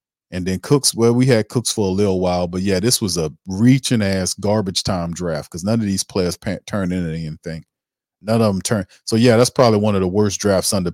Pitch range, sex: 90-110 Hz, male